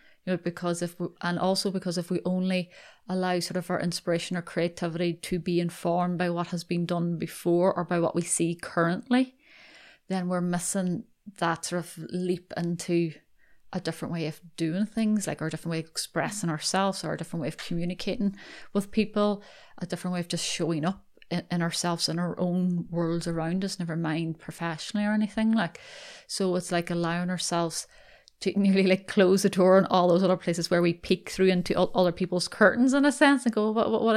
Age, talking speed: 30-49, 205 wpm